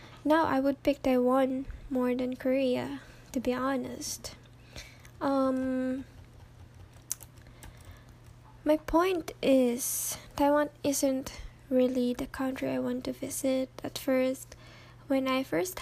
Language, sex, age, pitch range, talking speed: English, female, 10-29, 255-280 Hz, 110 wpm